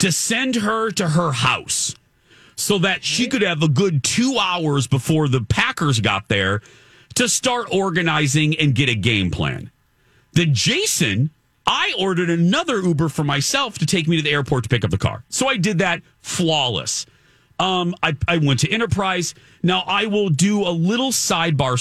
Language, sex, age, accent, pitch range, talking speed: English, male, 40-59, American, 95-160 Hz, 180 wpm